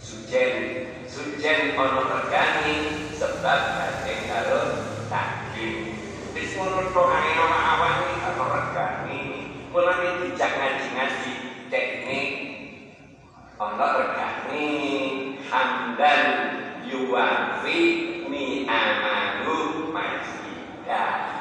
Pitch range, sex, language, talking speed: 125-175 Hz, male, Indonesian, 65 wpm